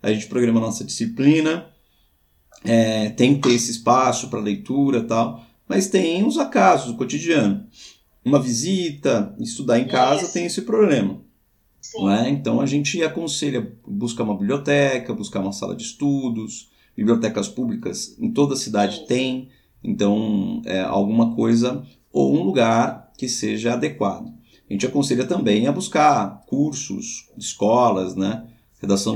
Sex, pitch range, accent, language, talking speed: male, 105-150 Hz, Brazilian, Portuguese, 140 wpm